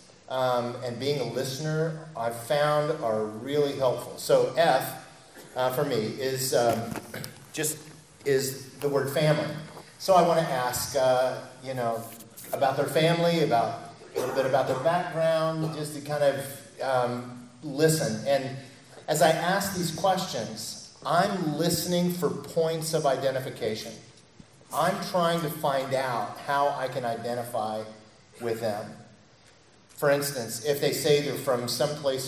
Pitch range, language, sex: 130-160 Hz, English, male